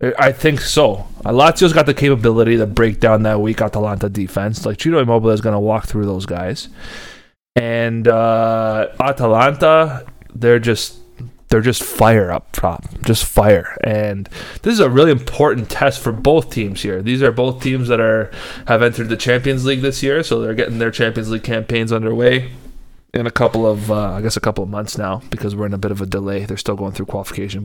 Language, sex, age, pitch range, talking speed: English, male, 20-39, 105-125 Hz, 205 wpm